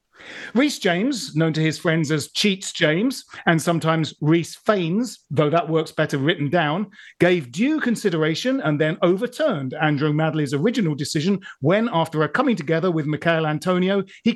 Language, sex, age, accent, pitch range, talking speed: English, male, 40-59, British, 155-210 Hz, 160 wpm